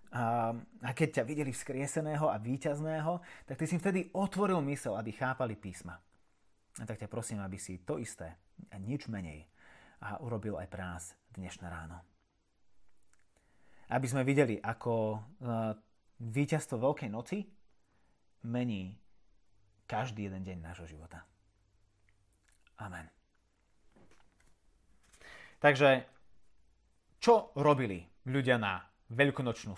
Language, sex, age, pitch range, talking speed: Slovak, male, 30-49, 100-150 Hz, 105 wpm